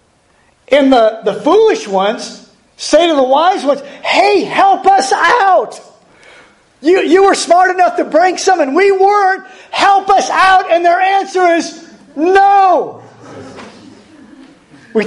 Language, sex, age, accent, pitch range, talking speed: English, male, 50-69, American, 225-345 Hz, 135 wpm